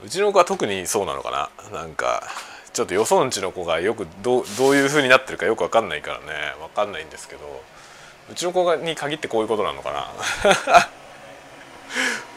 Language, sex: Japanese, male